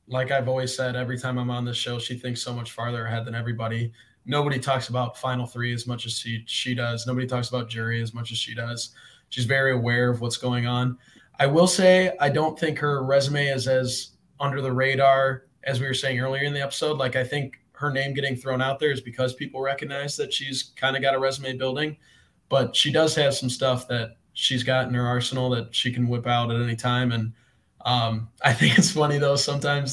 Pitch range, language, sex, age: 125-145 Hz, English, male, 20-39